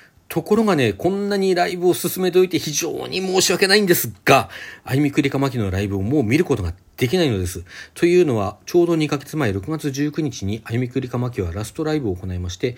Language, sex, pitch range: Japanese, male, 100-155 Hz